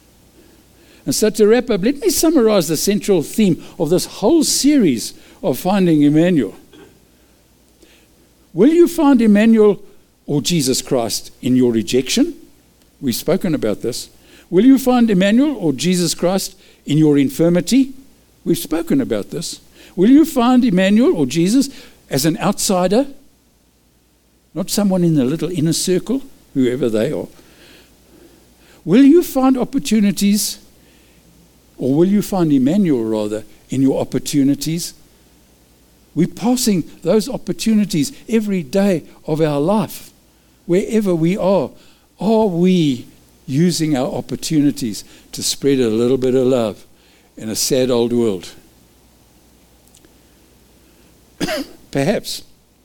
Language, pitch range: English, 135-225 Hz